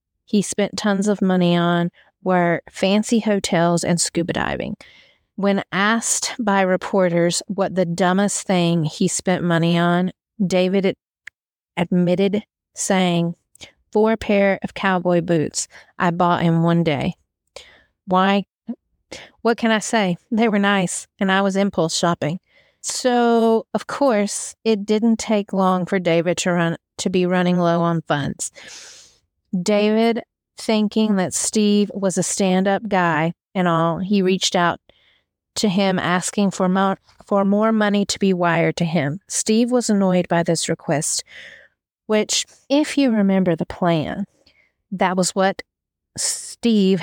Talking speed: 140 wpm